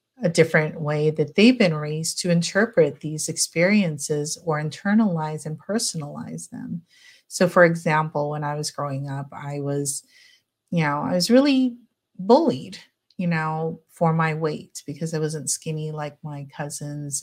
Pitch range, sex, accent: 150-180 Hz, female, American